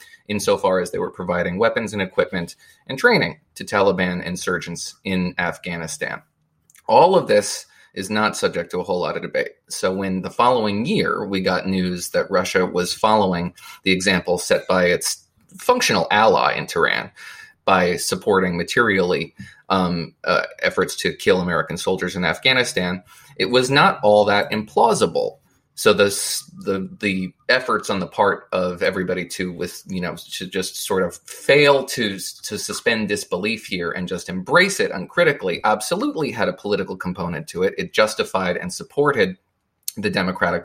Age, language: 30-49, English